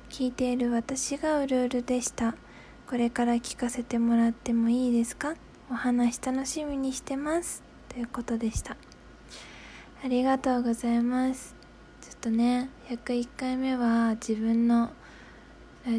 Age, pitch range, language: 20-39, 225-255 Hz, Japanese